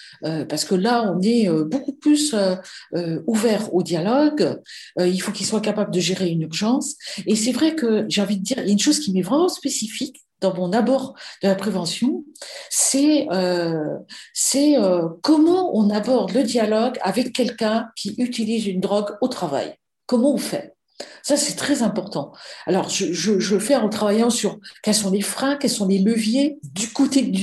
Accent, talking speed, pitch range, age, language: French, 185 wpm, 190-265 Hz, 50-69, French